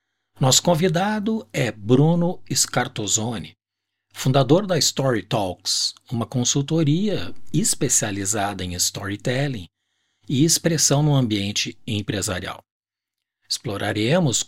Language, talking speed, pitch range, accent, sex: Portuguese, 80 wpm, 110-145 Hz, Brazilian, male